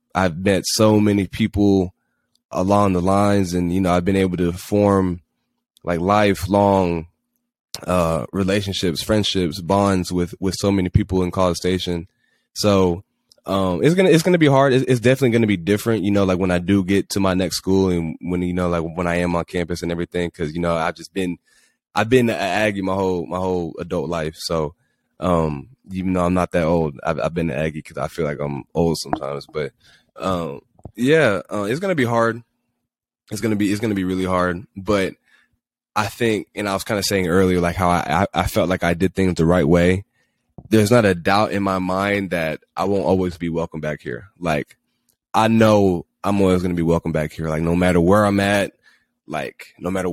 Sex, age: male, 20-39